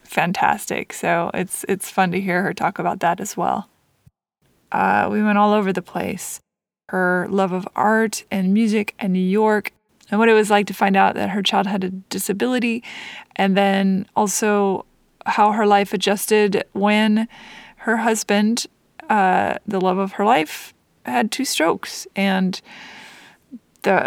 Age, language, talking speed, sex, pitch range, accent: 20-39, English, 160 wpm, female, 195-220 Hz, American